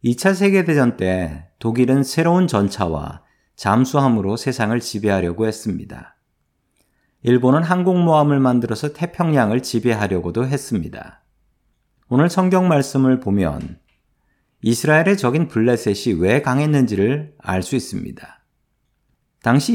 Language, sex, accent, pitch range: Korean, male, native, 105-150 Hz